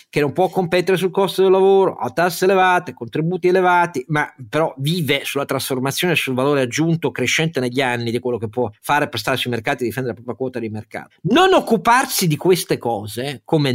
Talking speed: 200 wpm